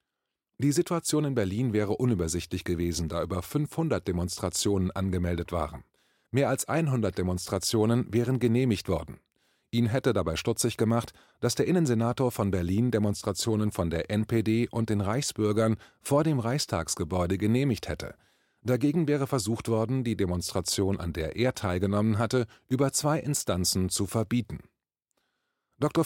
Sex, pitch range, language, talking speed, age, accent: male, 95-125 Hz, German, 135 wpm, 30-49, German